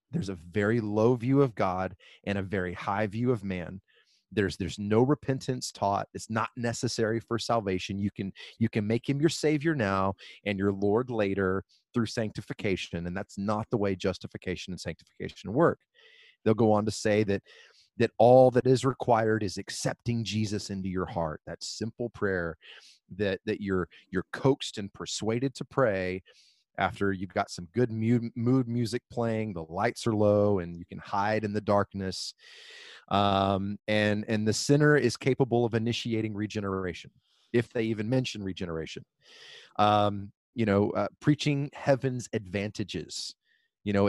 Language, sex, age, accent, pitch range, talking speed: English, male, 30-49, American, 100-120 Hz, 165 wpm